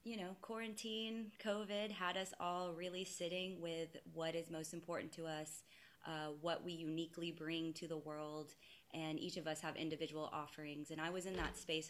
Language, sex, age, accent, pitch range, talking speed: English, female, 20-39, American, 155-175 Hz, 185 wpm